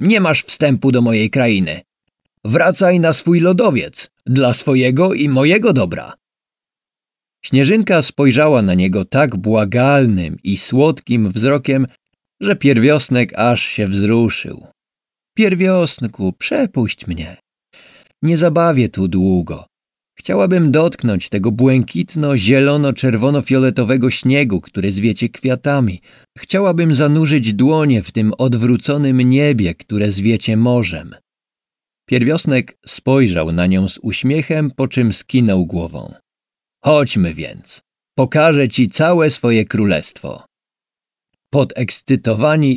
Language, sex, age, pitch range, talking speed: Polish, male, 50-69, 110-145 Hz, 100 wpm